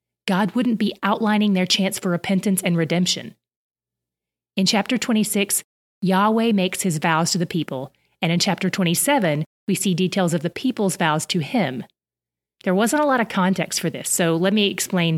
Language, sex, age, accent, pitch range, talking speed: English, female, 30-49, American, 165-205 Hz, 180 wpm